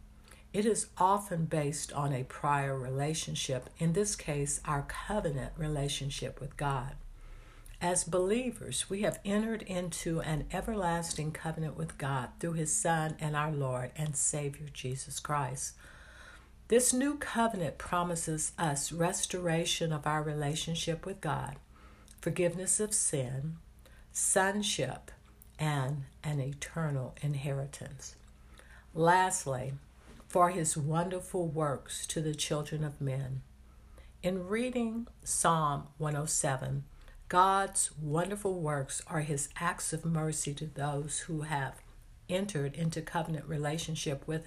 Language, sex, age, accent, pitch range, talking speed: English, female, 60-79, American, 135-170 Hz, 115 wpm